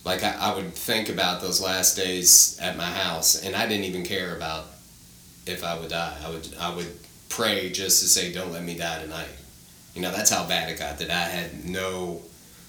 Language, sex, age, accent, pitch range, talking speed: English, male, 30-49, American, 80-100 Hz, 220 wpm